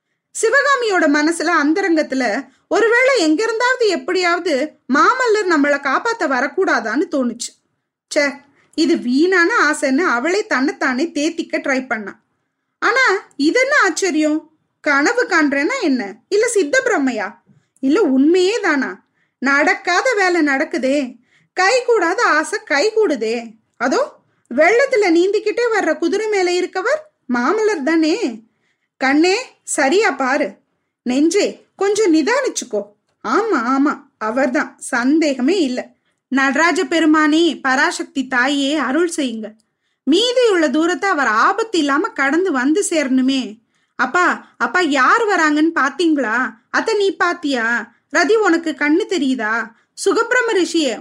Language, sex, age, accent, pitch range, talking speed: Tamil, female, 20-39, native, 275-375 Hz, 105 wpm